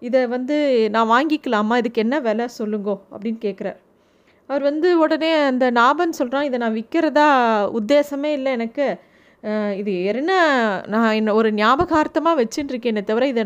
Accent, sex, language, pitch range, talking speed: native, female, Tamil, 225-295 Hz, 145 wpm